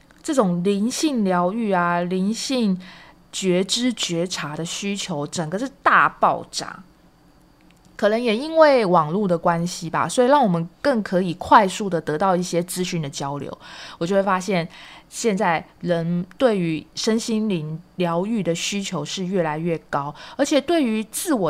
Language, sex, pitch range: Chinese, female, 170-220 Hz